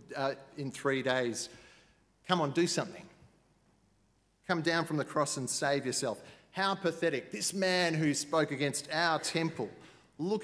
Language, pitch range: English, 130-165 Hz